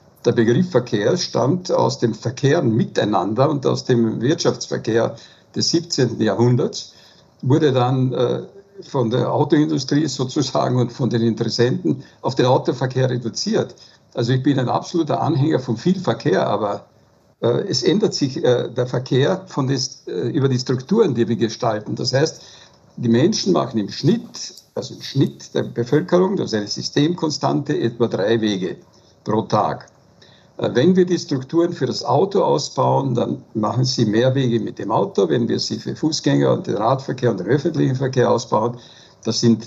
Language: German